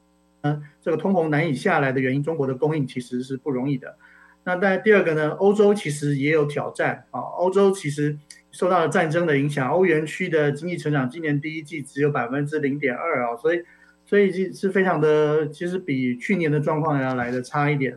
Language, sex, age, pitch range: Chinese, male, 30-49, 140-180 Hz